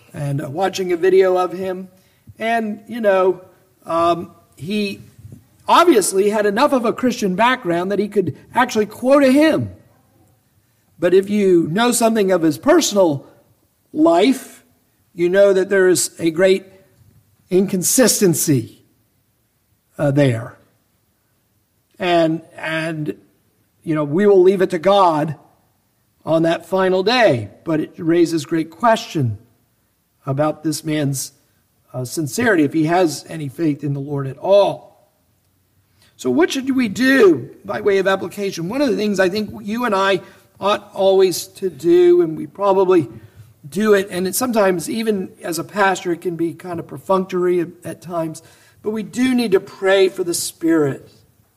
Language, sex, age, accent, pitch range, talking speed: English, male, 50-69, American, 130-195 Hz, 150 wpm